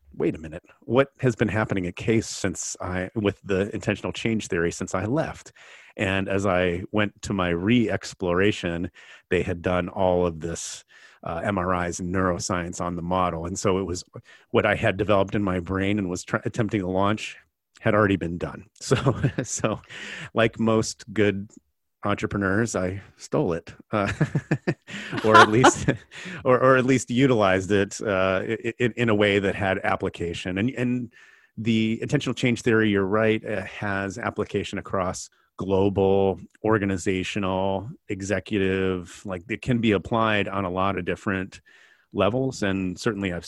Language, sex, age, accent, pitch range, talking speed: English, male, 30-49, American, 90-110 Hz, 155 wpm